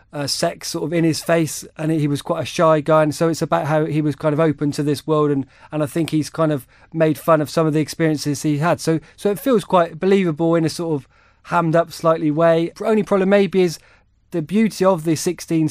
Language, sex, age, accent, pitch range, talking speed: English, male, 20-39, British, 155-175 Hz, 250 wpm